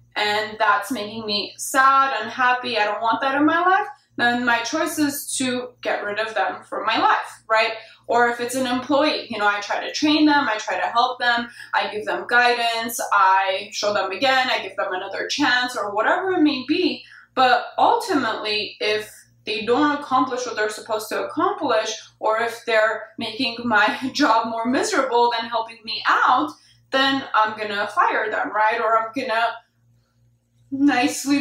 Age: 20-39